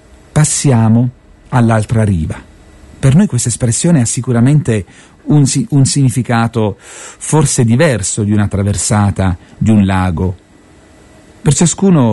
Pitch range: 100-130 Hz